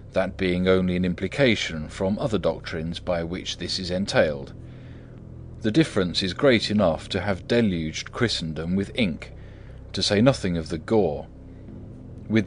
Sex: male